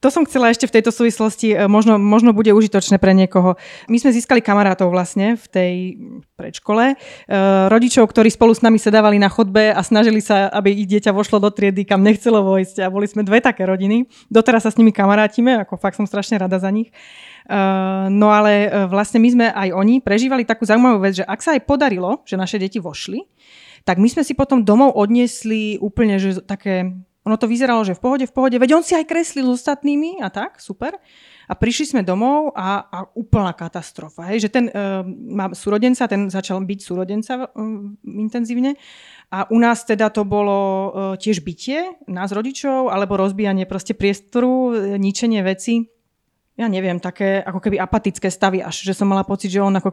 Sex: female